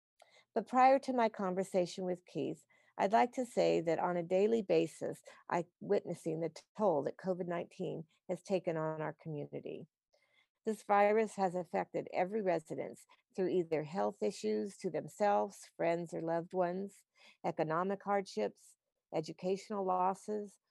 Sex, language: female, English